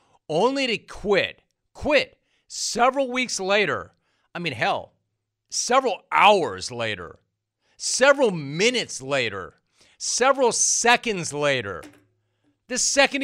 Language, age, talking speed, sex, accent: English, 40-59, 95 wpm, male, American